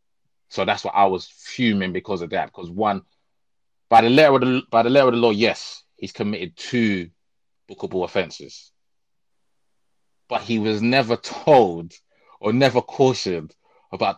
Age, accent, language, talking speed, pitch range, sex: 20-39, British, English, 155 wpm, 100-155 Hz, male